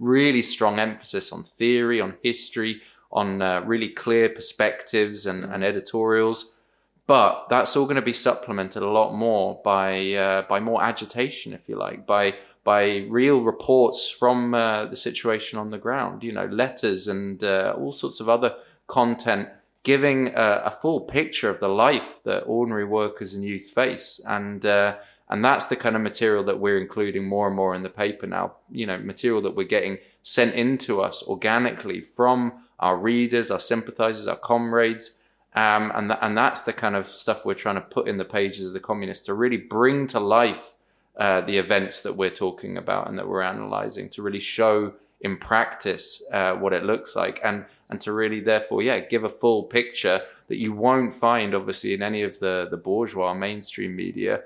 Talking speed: 190 wpm